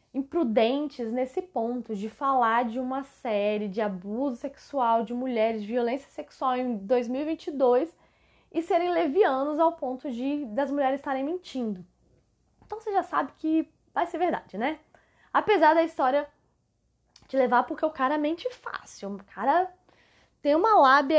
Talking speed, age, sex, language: 145 wpm, 10-29, female, Portuguese